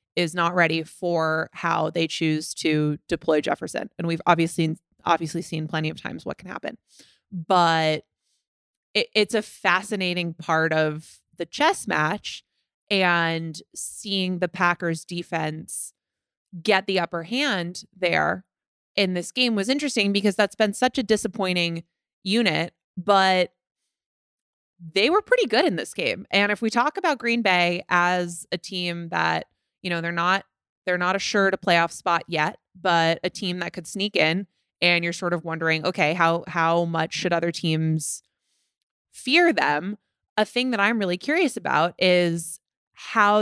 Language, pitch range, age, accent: English, 165-195 Hz, 20-39, American